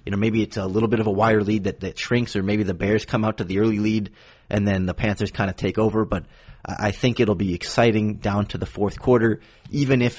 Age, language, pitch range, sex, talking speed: 30-49, English, 95-110 Hz, male, 265 wpm